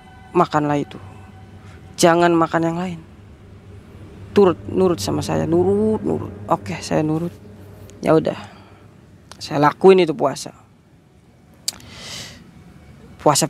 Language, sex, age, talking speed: Indonesian, female, 20-39, 100 wpm